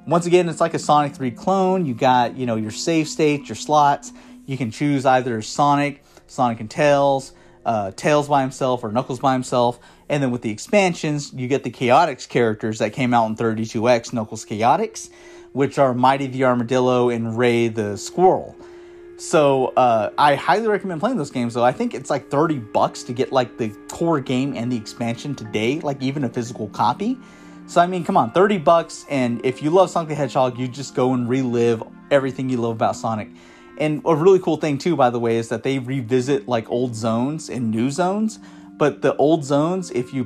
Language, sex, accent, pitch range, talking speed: English, male, American, 120-160 Hz, 205 wpm